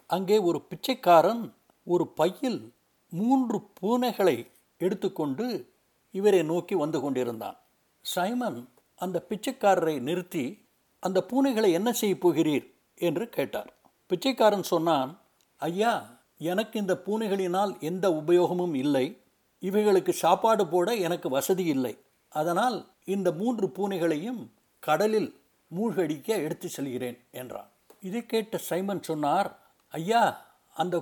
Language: Tamil